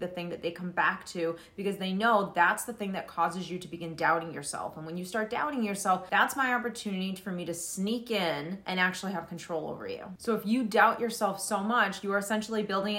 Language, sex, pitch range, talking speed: English, female, 175-220 Hz, 235 wpm